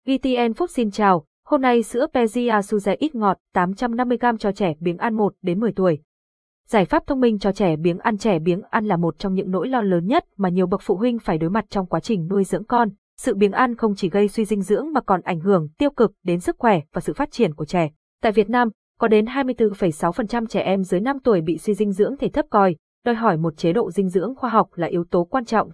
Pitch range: 190-245 Hz